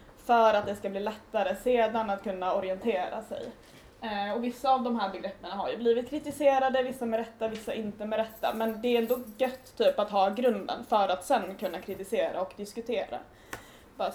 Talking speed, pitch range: 195 wpm, 210-260 Hz